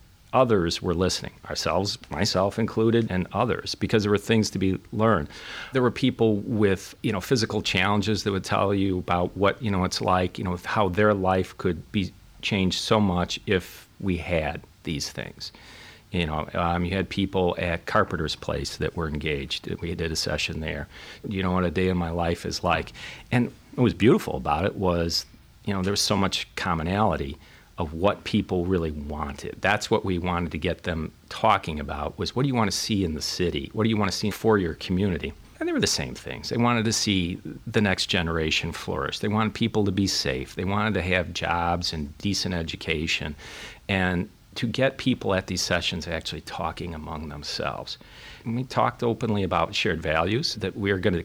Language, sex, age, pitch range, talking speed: English, male, 40-59, 85-105 Hz, 200 wpm